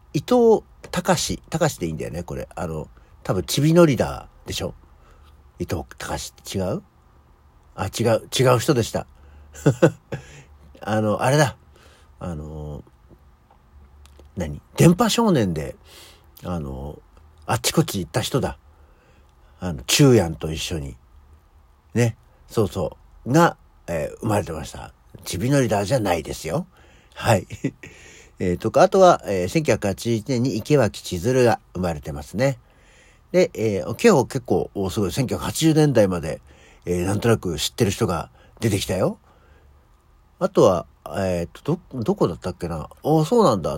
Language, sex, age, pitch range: Japanese, male, 60-79, 75-115 Hz